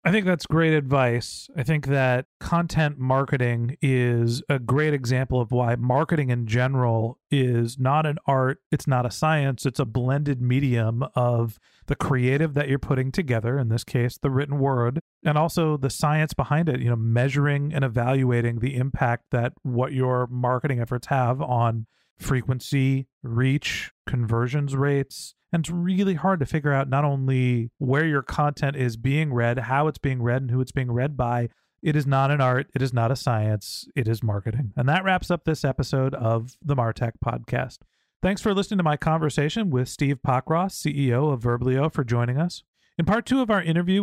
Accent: American